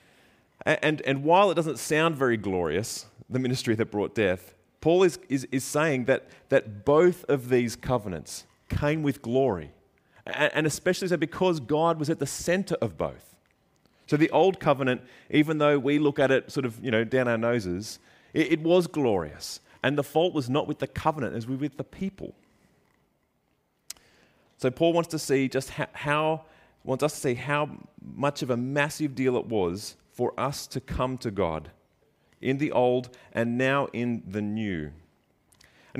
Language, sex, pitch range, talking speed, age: English, male, 110-150 Hz, 180 wpm, 30-49